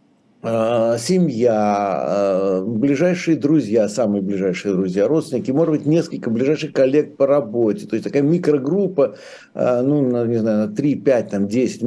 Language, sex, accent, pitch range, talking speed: Russian, male, native, 130-170 Hz, 125 wpm